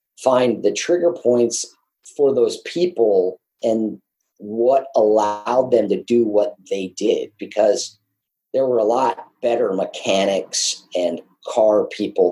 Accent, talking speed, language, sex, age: American, 125 wpm, English, male, 40-59